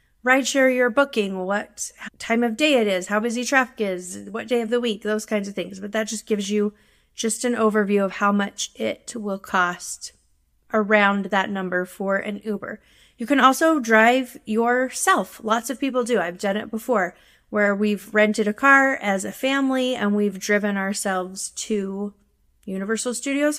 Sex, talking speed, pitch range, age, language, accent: female, 180 wpm, 205-245 Hz, 30-49, English, American